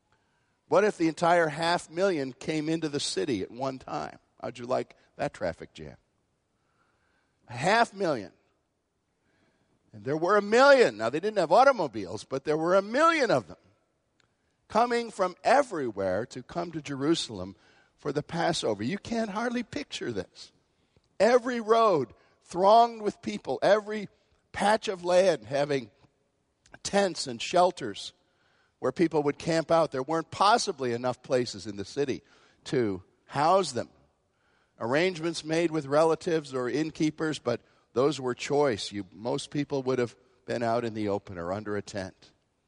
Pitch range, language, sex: 120-175 Hz, English, male